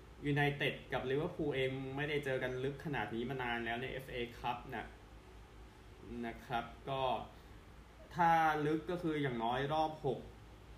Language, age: Thai, 20-39